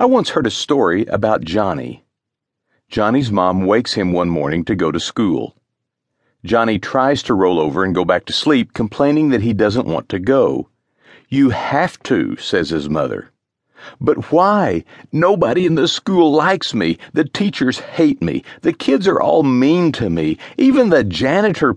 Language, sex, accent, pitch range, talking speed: English, male, American, 105-150 Hz, 170 wpm